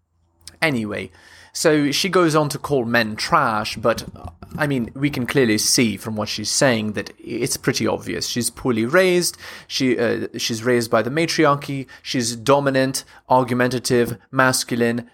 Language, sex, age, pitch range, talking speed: English, male, 20-39, 110-130 Hz, 150 wpm